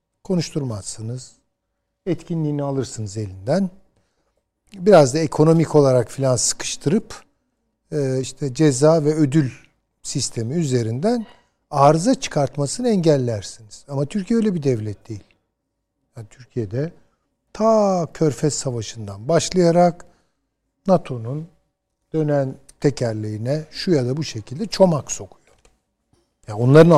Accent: native